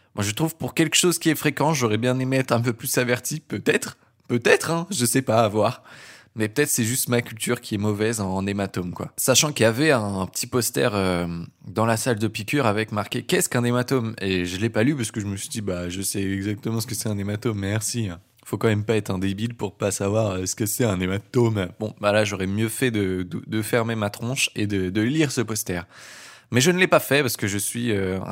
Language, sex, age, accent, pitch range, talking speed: French, male, 20-39, French, 100-125 Hz, 265 wpm